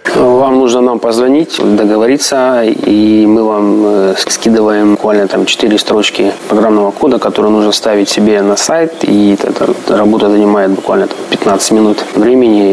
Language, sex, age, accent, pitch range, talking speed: Russian, male, 20-39, native, 100-110 Hz, 135 wpm